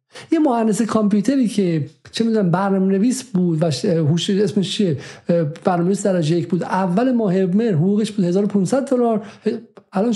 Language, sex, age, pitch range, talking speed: Persian, male, 50-69, 165-220 Hz, 130 wpm